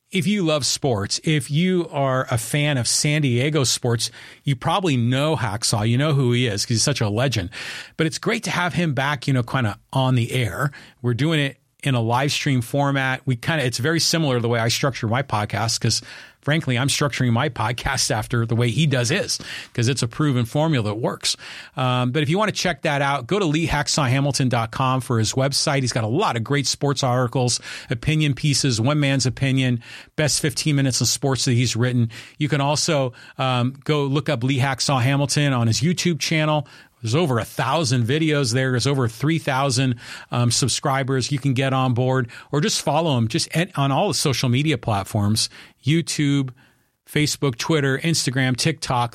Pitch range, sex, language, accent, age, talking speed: 120-150 Hz, male, English, American, 40-59, 195 wpm